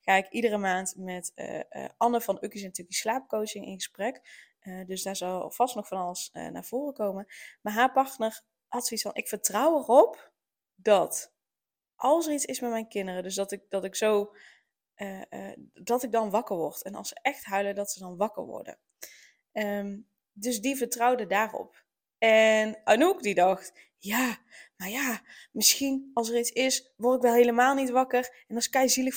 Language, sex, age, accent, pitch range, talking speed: Dutch, female, 20-39, Dutch, 205-255 Hz, 190 wpm